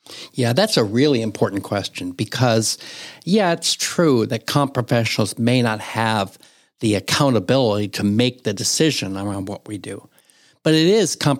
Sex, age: male, 60-79